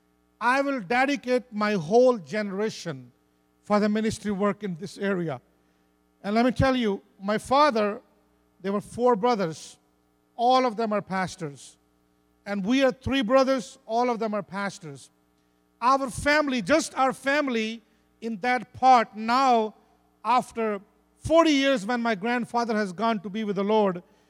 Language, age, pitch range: English, 50-69, 165-235 Hz